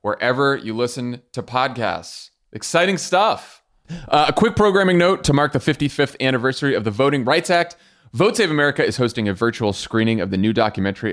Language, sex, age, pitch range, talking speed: English, male, 30-49, 115-155 Hz, 185 wpm